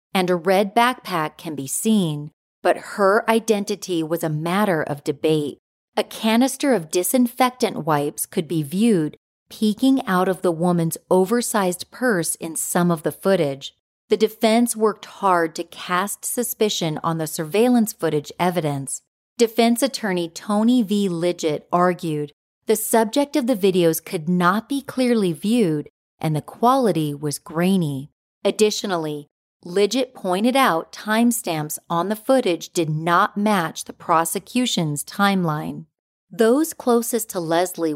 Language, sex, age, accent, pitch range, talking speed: English, female, 40-59, American, 165-225 Hz, 135 wpm